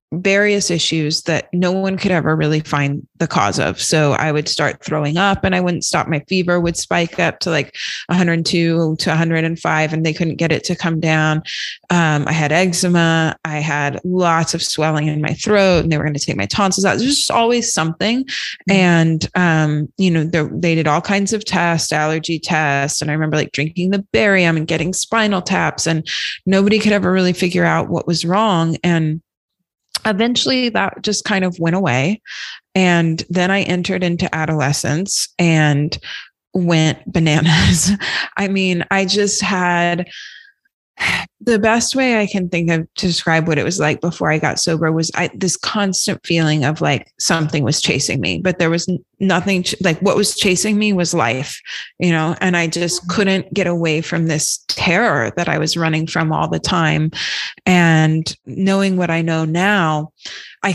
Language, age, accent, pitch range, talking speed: English, 20-39, American, 155-185 Hz, 185 wpm